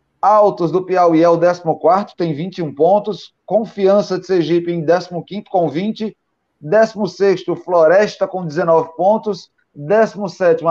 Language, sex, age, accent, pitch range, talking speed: Portuguese, male, 30-49, Brazilian, 145-190 Hz, 125 wpm